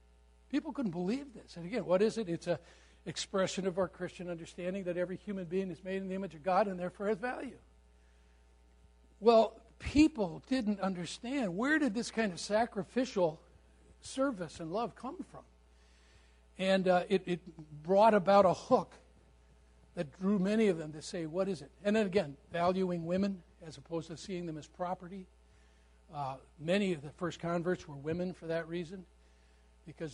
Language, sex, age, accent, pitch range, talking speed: English, male, 60-79, American, 150-190 Hz, 175 wpm